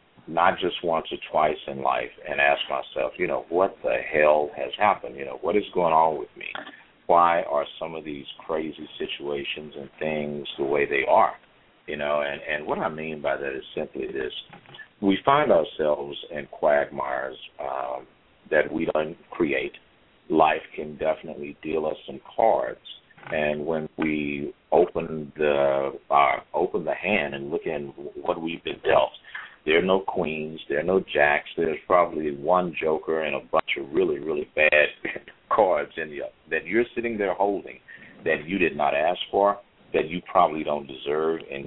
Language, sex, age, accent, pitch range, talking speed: English, male, 50-69, American, 70-100 Hz, 175 wpm